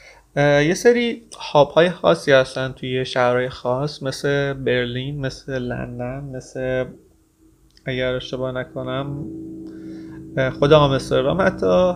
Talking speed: 100 wpm